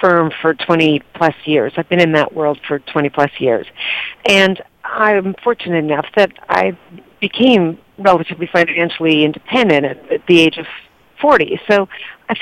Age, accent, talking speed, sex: 50-69, American, 150 wpm, female